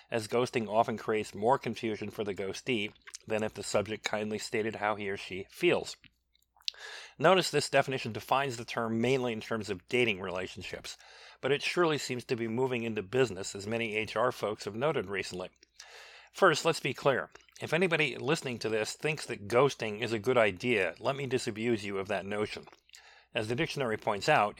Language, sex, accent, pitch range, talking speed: English, male, American, 110-135 Hz, 185 wpm